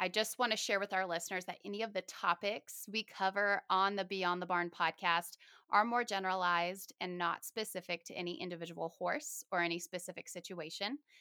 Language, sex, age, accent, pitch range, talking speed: English, female, 20-39, American, 185-235 Hz, 185 wpm